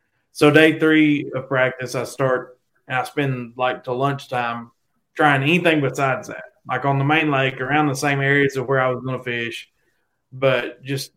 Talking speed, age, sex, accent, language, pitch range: 190 wpm, 20-39, male, American, English, 125-140 Hz